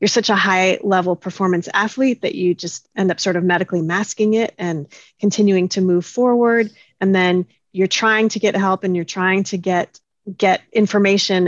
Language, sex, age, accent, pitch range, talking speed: English, female, 30-49, American, 180-210 Hz, 190 wpm